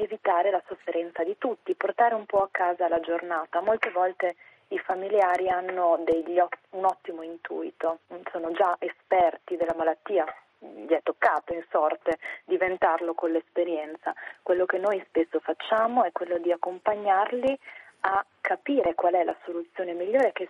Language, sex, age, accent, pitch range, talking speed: Italian, female, 30-49, native, 170-200 Hz, 145 wpm